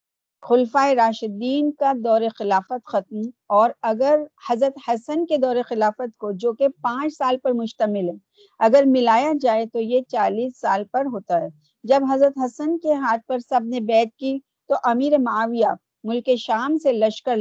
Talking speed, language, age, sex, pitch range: 160 wpm, Urdu, 50-69, female, 225-275 Hz